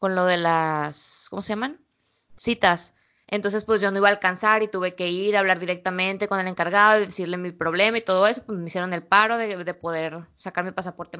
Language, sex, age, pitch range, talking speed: Spanish, female, 20-39, 185-225 Hz, 230 wpm